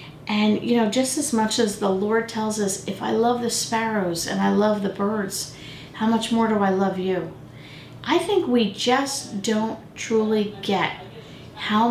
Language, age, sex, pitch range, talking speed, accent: English, 50-69, female, 195-250 Hz, 180 wpm, American